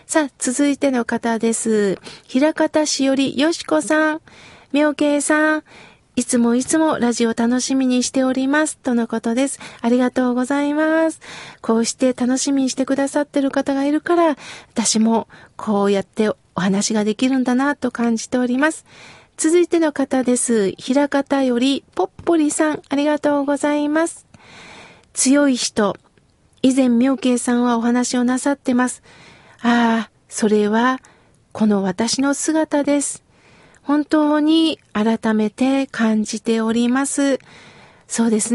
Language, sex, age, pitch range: Japanese, female, 40-59, 235-300 Hz